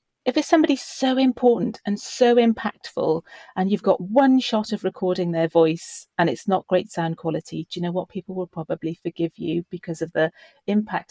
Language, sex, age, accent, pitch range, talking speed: English, female, 40-59, British, 160-200 Hz, 195 wpm